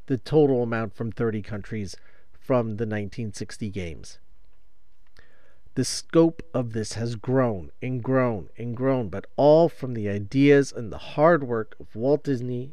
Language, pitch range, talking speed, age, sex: English, 115-160 Hz, 150 wpm, 40-59, male